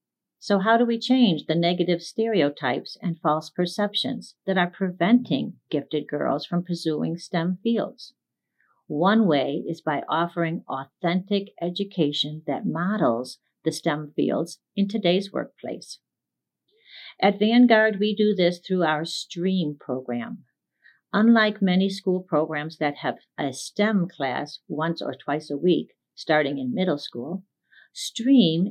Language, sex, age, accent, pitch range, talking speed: English, female, 50-69, American, 155-215 Hz, 130 wpm